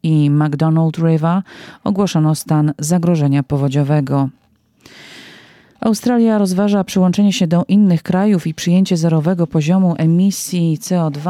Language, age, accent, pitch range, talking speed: Polish, 40-59, native, 150-180 Hz, 105 wpm